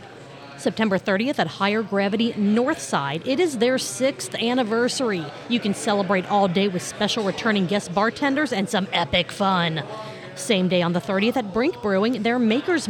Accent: American